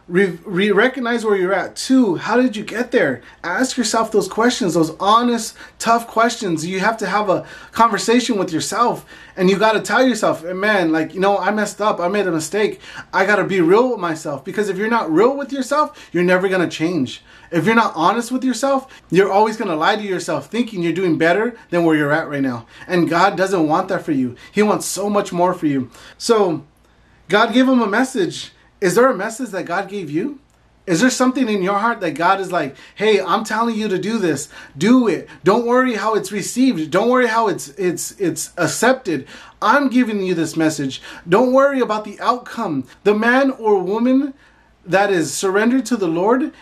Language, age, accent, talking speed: English, 30-49, American, 210 wpm